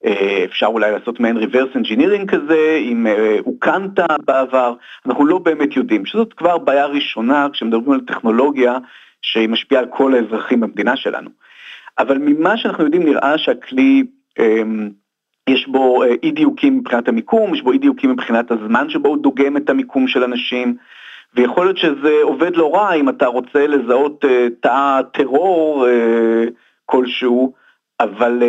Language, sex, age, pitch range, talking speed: Hebrew, male, 50-69, 120-205 Hz, 155 wpm